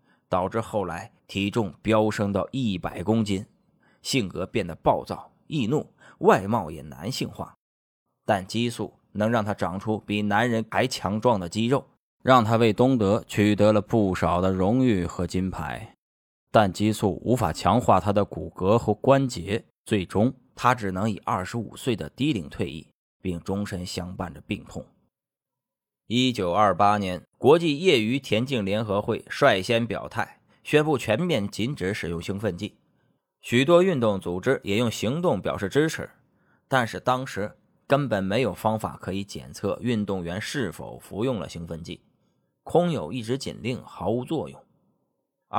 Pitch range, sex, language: 95-125 Hz, male, Chinese